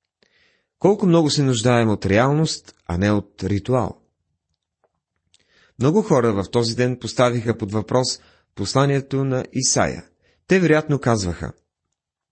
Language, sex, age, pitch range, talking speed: Bulgarian, male, 30-49, 100-140 Hz, 115 wpm